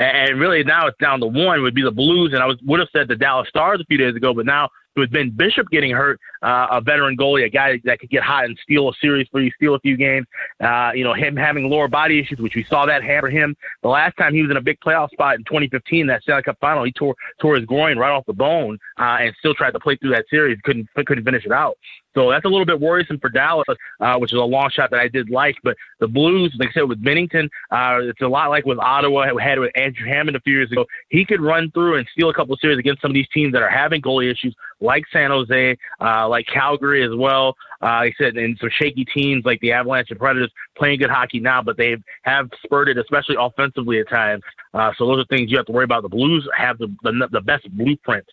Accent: American